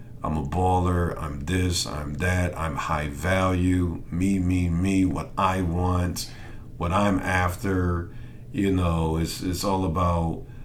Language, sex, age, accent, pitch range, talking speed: English, male, 50-69, American, 85-110 Hz, 140 wpm